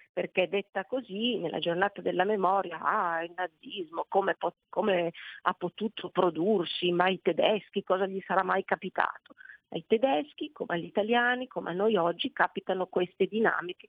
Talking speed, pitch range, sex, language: 150 wpm, 175-210 Hz, female, Italian